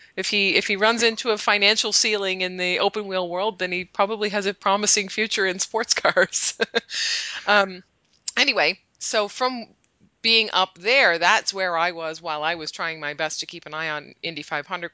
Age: 20-39